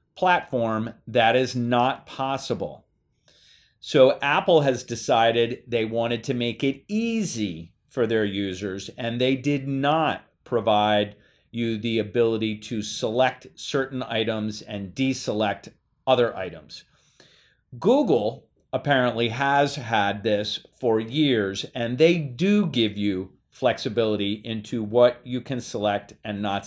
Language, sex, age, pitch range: English, male, 40-59, 110-140 Hz